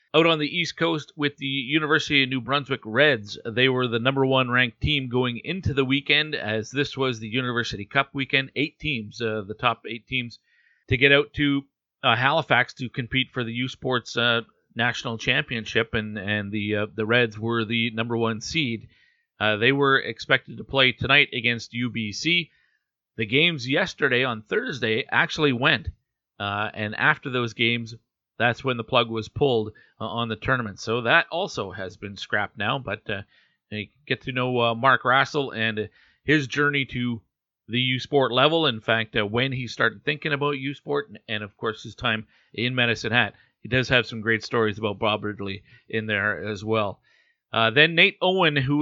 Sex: male